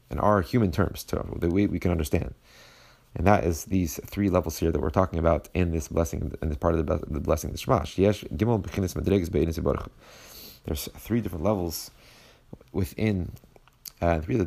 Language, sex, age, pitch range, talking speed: English, male, 30-49, 80-95 Hz, 160 wpm